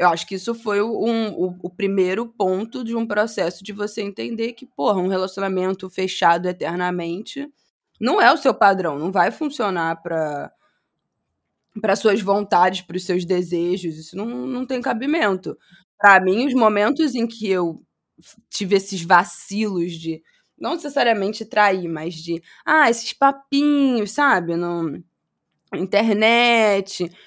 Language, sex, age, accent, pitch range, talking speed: Portuguese, female, 20-39, Brazilian, 170-230 Hz, 145 wpm